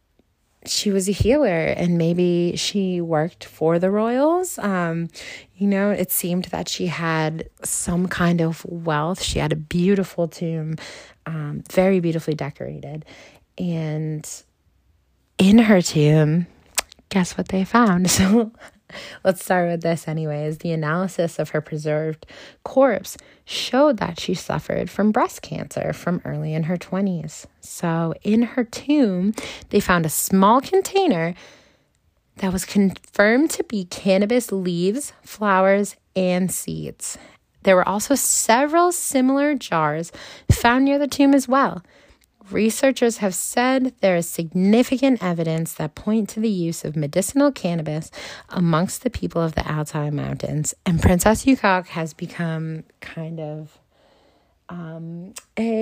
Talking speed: 135 wpm